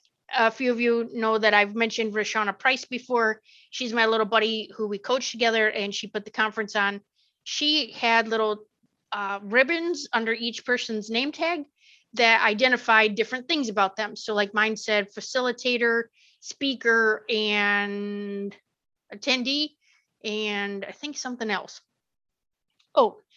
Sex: female